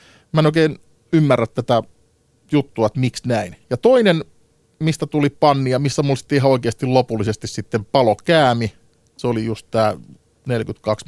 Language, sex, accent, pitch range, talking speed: Finnish, male, native, 110-145 Hz, 140 wpm